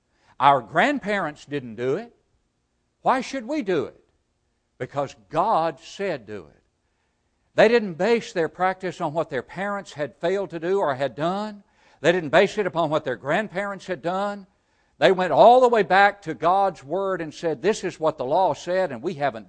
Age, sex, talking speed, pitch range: 60-79, male, 190 wpm, 115-170 Hz